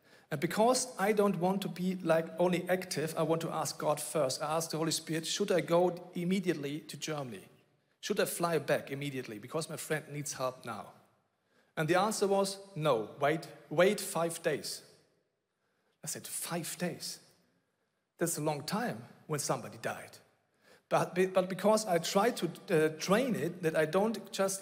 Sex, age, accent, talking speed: male, 40-59, German, 170 wpm